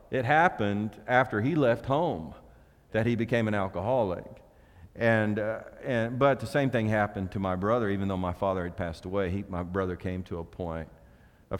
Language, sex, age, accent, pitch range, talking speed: English, male, 40-59, American, 90-110 Hz, 190 wpm